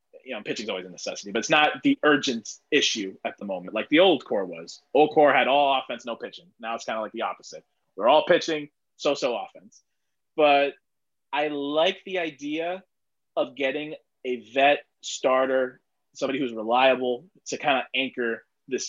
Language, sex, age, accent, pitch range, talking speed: English, male, 20-39, American, 120-150 Hz, 185 wpm